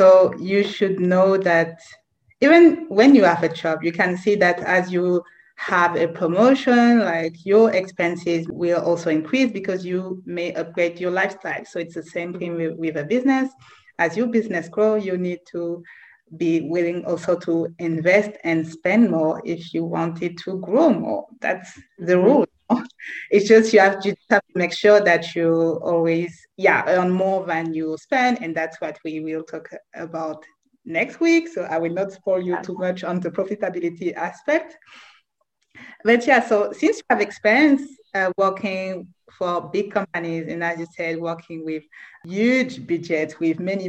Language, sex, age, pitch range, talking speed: English, female, 30-49, 170-205 Hz, 170 wpm